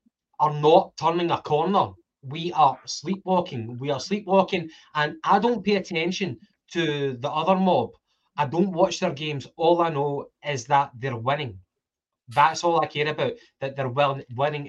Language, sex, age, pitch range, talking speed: English, male, 20-39, 140-175 Hz, 165 wpm